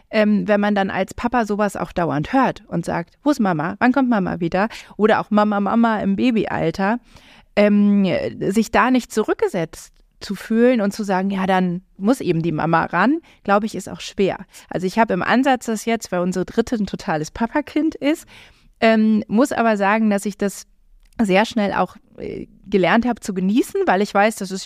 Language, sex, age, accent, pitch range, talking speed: German, female, 30-49, German, 190-240 Hz, 195 wpm